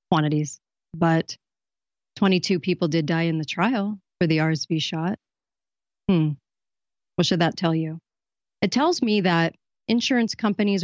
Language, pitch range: English, 170-225 Hz